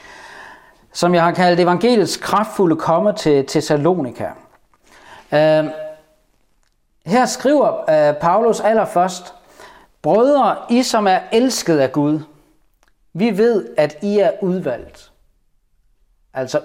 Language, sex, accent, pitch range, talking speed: Danish, male, native, 145-200 Hz, 105 wpm